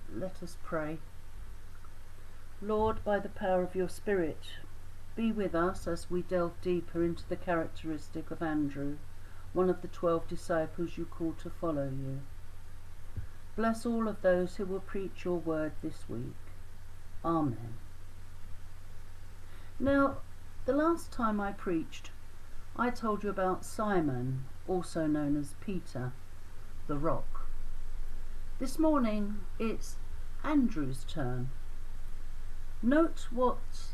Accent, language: British, English